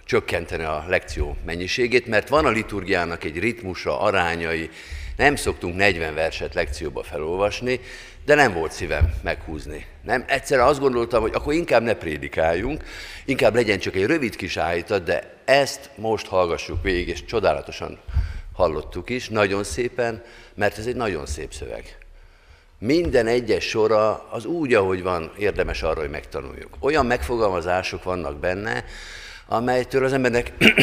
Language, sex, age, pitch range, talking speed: Hungarian, male, 50-69, 85-120 Hz, 140 wpm